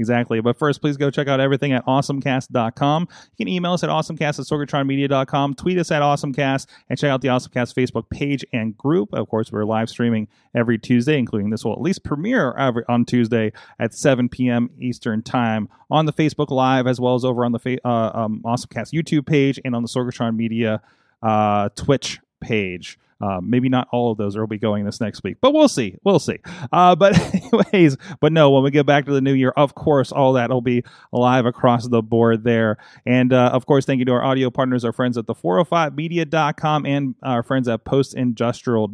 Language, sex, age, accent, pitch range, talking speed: English, male, 30-49, American, 120-150 Hz, 215 wpm